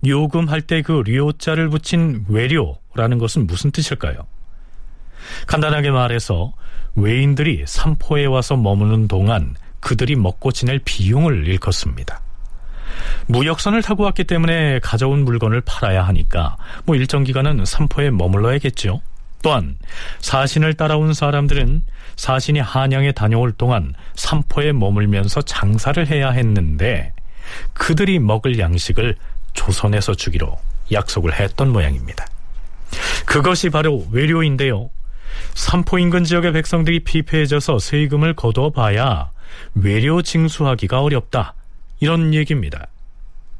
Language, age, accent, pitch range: Korean, 40-59, native, 100-150 Hz